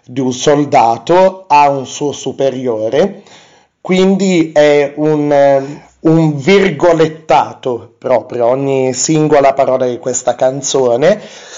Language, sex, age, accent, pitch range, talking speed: Italian, male, 30-49, native, 130-160 Hz, 100 wpm